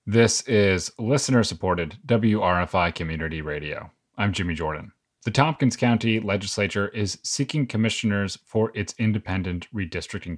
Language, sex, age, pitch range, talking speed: English, male, 30-49, 95-115 Hz, 120 wpm